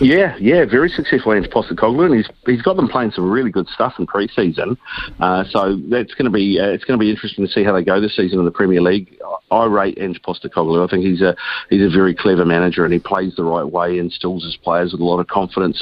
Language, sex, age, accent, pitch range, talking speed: English, male, 40-59, Australian, 85-100 Hz, 260 wpm